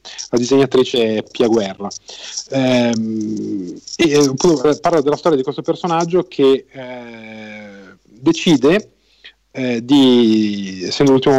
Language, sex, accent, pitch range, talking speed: Italian, male, native, 110-140 Hz, 110 wpm